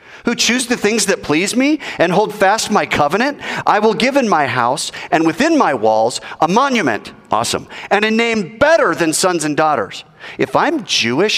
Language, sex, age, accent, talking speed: English, male, 40-59, American, 190 wpm